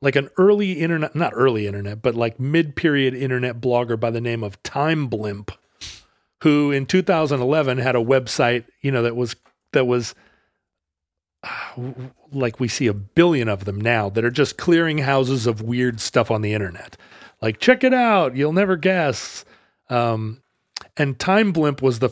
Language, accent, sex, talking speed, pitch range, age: English, American, male, 170 wpm, 115-150 Hz, 40-59